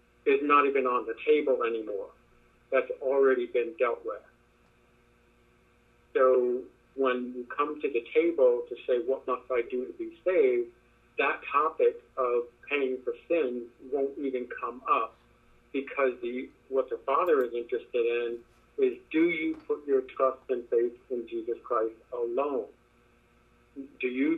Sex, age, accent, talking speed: male, 50-69, American, 145 wpm